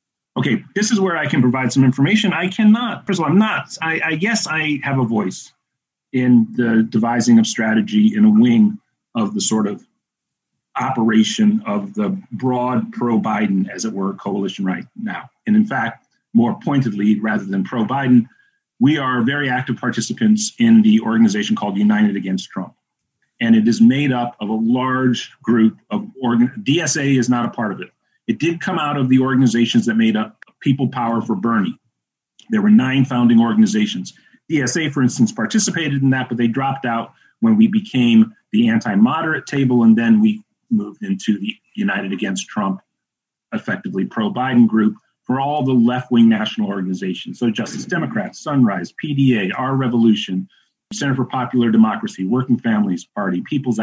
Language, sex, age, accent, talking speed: English, male, 40-59, American, 170 wpm